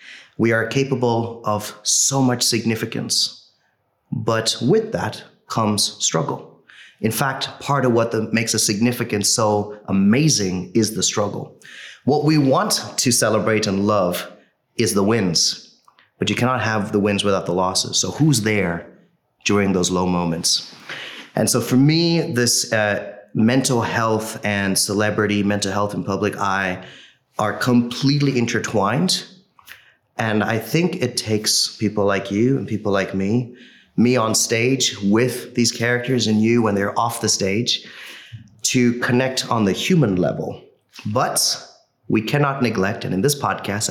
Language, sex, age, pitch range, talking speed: English, male, 30-49, 105-125 Hz, 150 wpm